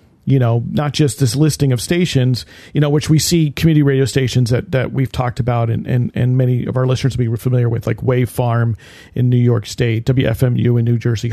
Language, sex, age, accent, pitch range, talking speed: English, male, 40-59, American, 115-145 Hz, 230 wpm